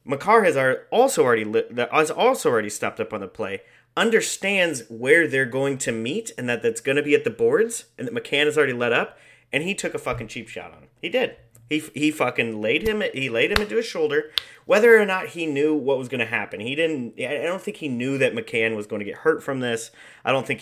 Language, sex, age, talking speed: English, male, 30-49, 245 wpm